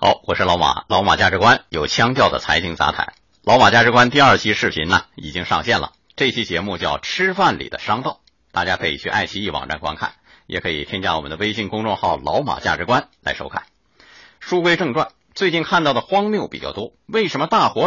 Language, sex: Chinese, male